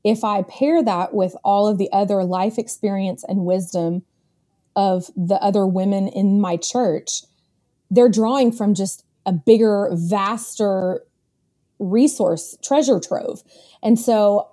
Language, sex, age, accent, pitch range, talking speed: English, female, 20-39, American, 190-230 Hz, 130 wpm